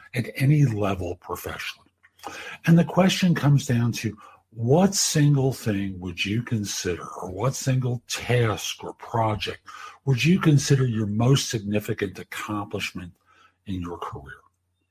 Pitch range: 115-160 Hz